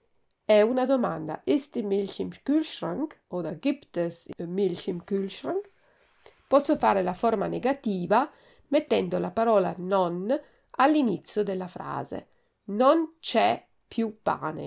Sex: female